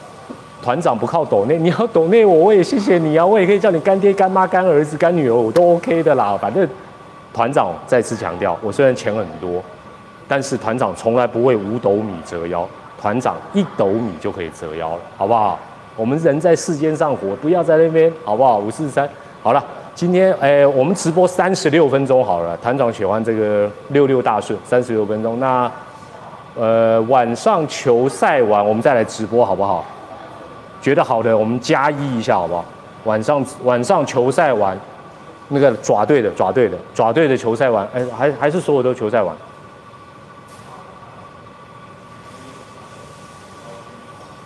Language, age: Chinese, 30-49